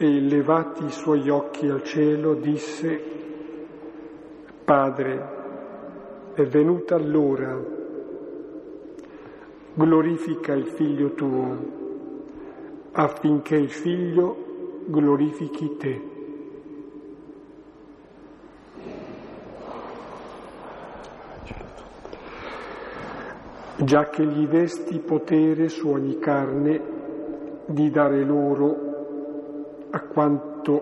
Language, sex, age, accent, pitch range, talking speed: Italian, male, 50-69, native, 145-165 Hz, 65 wpm